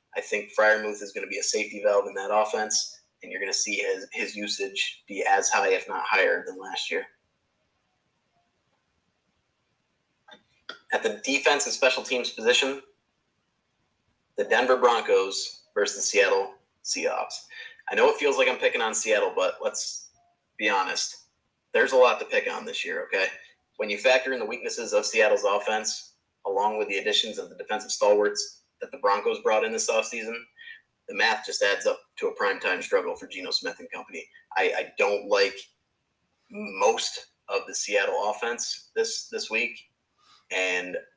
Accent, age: American, 30-49